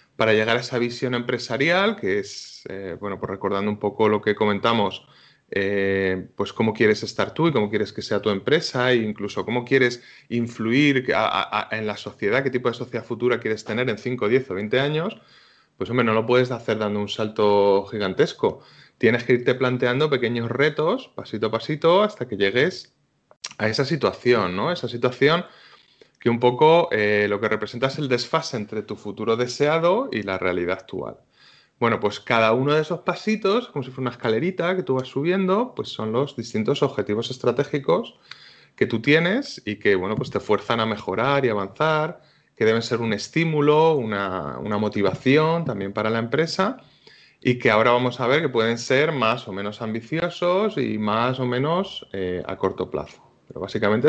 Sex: male